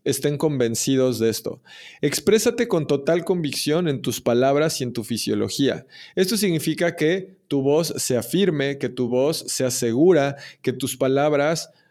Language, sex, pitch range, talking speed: Spanish, male, 125-170 Hz, 150 wpm